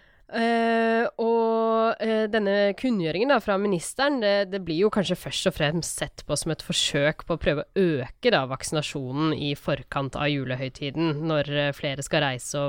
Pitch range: 145-175 Hz